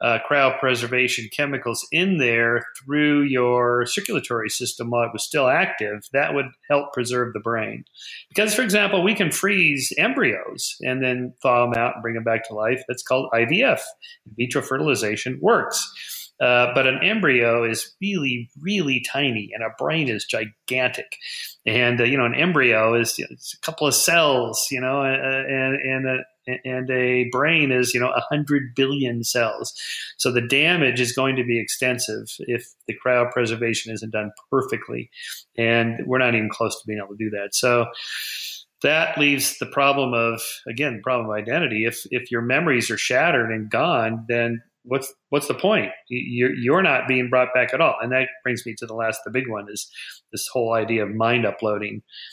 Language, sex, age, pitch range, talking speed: English, male, 40-59, 115-135 Hz, 185 wpm